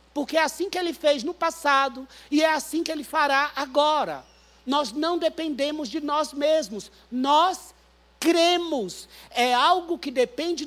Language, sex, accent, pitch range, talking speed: Portuguese, male, Brazilian, 185-305 Hz, 150 wpm